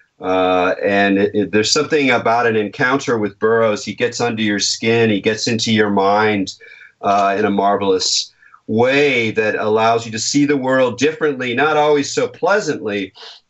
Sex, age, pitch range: male, 40-59, 105-145 Hz